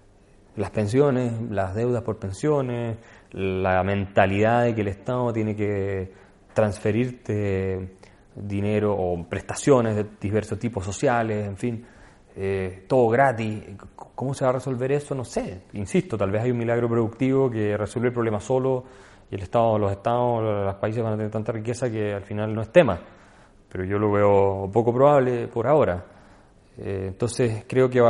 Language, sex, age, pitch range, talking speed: Spanish, male, 30-49, 100-125 Hz, 165 wpm